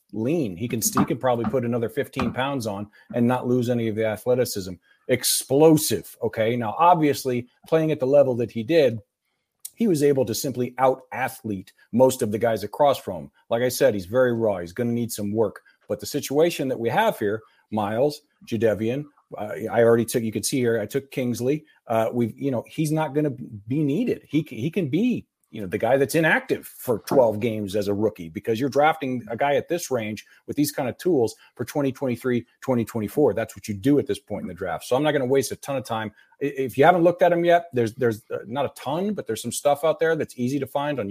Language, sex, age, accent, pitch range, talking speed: English, male, 40-59, American, 110-140 Hz, 235 wpm